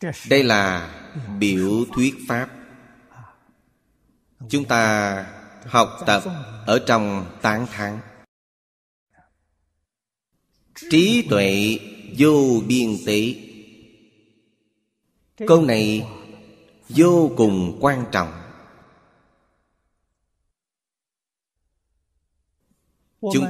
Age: 20-39